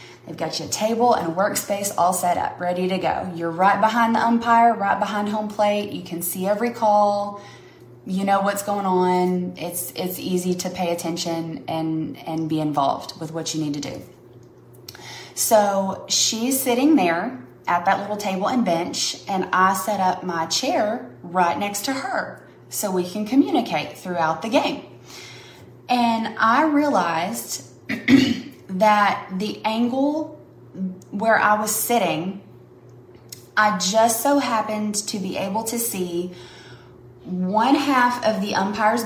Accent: American